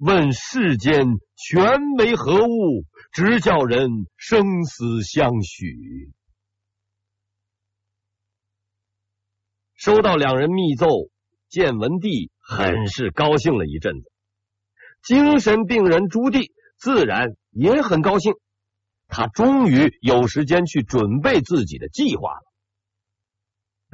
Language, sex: Chinese, male